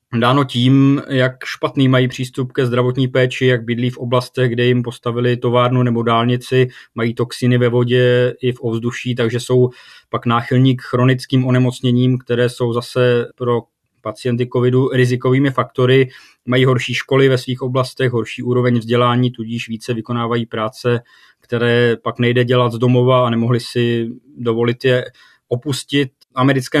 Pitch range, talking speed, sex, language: 120-130 Hz, 150 wpm, male, Czech